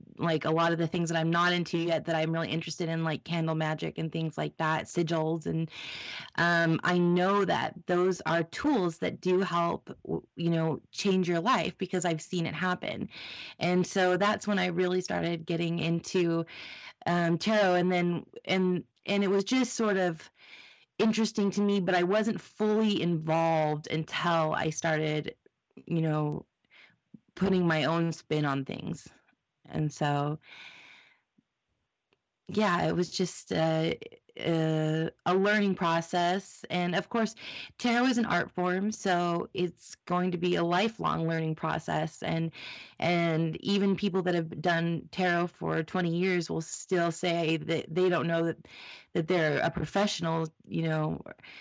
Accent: American